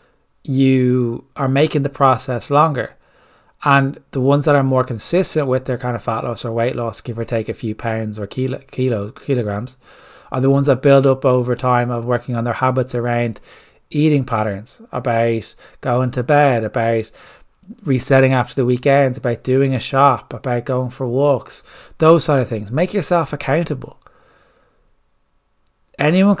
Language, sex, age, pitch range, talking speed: English, male, 20-39, 120-140 Hz, 165 wpm